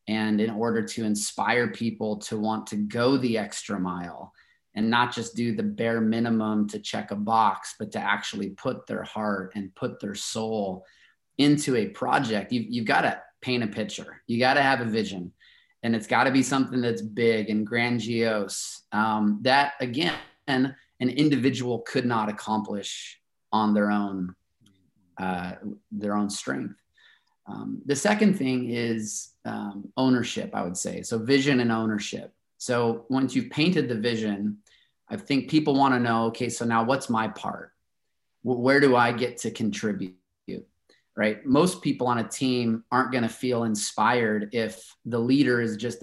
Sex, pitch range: male, 110-130 Hz